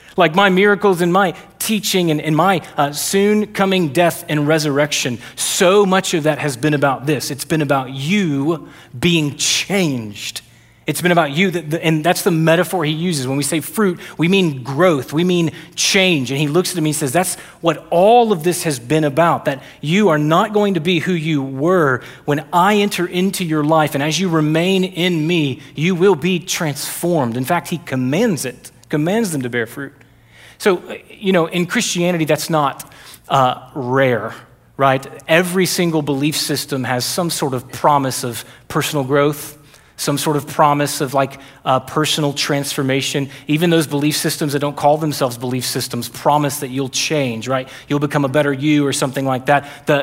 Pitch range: 140-175 Hz